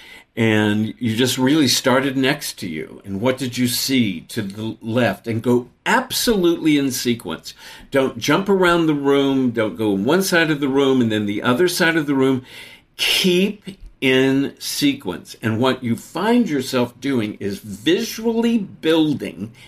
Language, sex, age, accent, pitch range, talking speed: English, male, 50-69, American, 115-155 Hz, 160 wpm